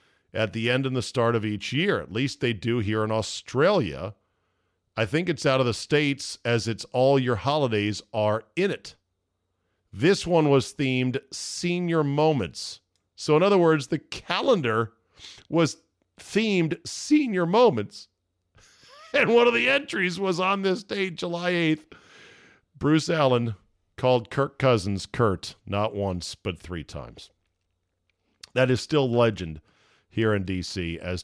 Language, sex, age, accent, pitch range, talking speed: English, male, 50-69, American, 95-140 Hz, 150 wpm